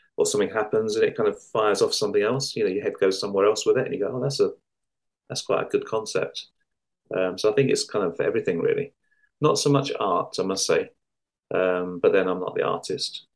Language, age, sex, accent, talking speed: English, 30-49, male, British, 245 wpm